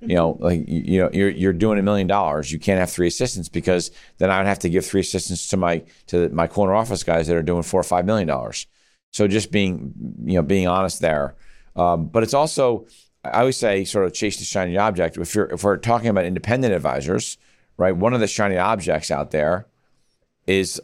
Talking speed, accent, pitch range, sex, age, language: 225 wpm, American, 85-110 Hz, male, 50-69, English